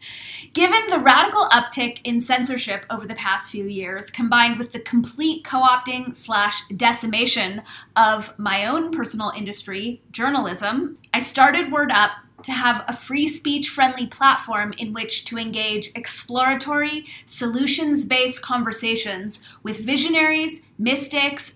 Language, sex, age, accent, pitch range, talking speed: English, female, 30-49, American, 220-275 Hz, 120 wpm